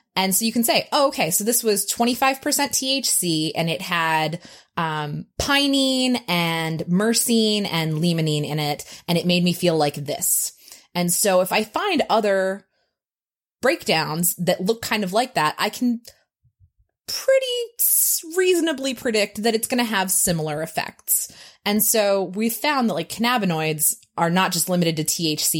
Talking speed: 160 wpm